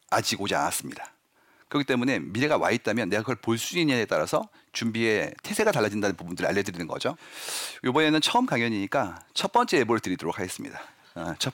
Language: English